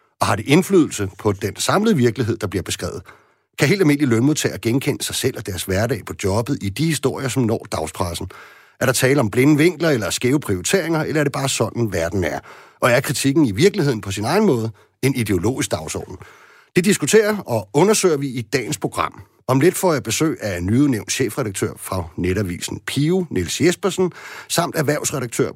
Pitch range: 110-155 Hz